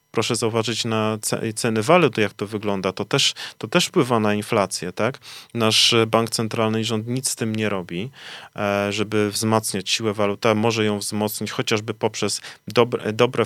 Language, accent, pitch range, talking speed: Polish, native, 110-125 Hz, 165 wpm